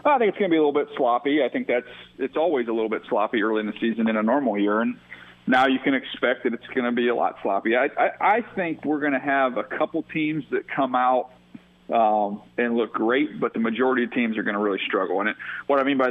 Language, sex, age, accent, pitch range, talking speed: English, male, 40-59, American, 110-130 Hz, 275 wpm